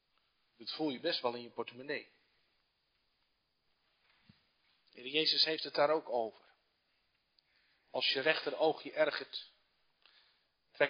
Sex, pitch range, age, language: male, 125-155 Hz, 40-59, Dutch